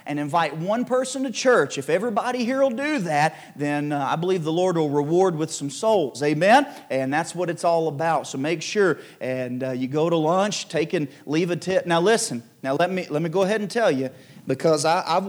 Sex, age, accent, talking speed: male, 40-59, American, 230 wpm